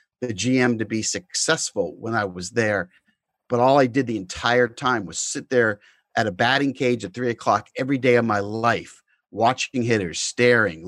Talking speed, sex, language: 190 wpm, male, English